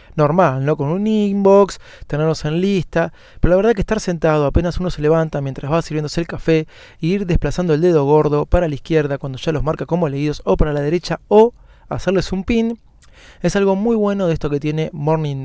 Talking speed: 210 wpm